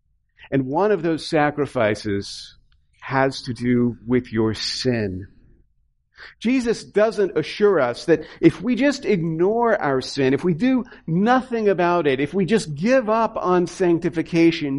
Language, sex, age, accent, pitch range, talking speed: English, male, 50-69, American, 120-175 Hz, 140 wpm